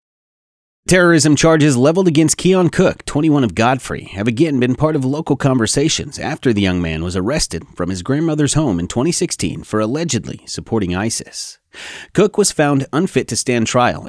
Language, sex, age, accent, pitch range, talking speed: English, male, 30-49, American, 110-150 Hz, 165 wpm